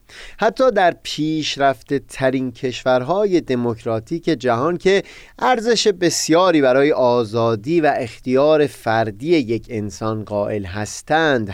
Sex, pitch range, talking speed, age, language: male, 120-170 Hz, 105 wpm, 30-49, Persian